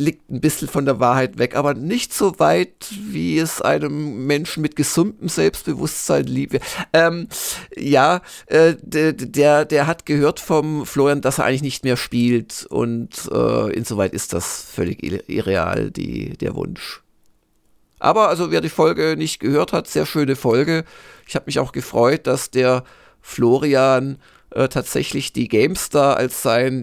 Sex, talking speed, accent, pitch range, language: male, 155 wpm, German, 120-150 Hz, German